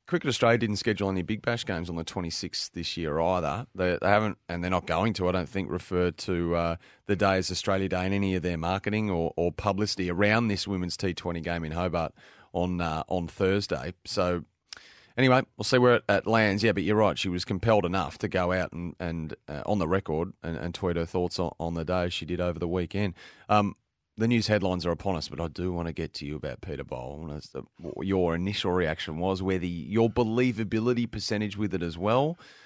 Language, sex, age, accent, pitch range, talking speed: English, male, 30-49, Australian, 85-105 Hz, 230 wpm